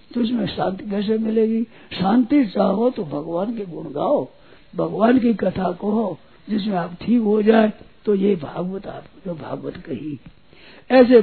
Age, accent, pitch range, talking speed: 60-79, native, 180-230 Hz, 150 wpm